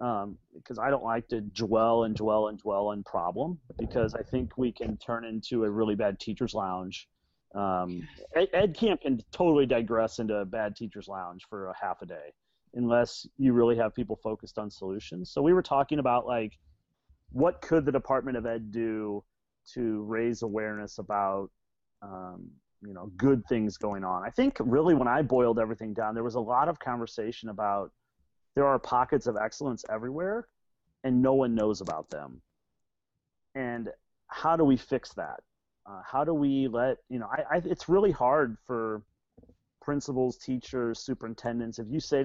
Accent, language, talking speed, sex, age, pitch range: American, English, 180 wpm, male, 30-49, 105-125 Hz